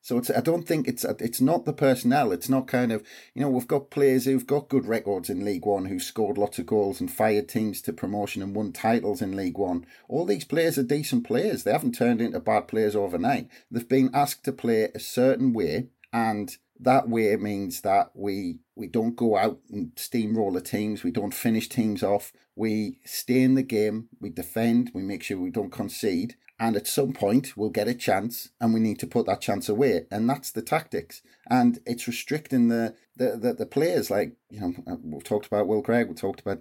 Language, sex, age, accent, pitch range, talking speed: English, male, 30-49, British, 110-135 Hz, 220 wpm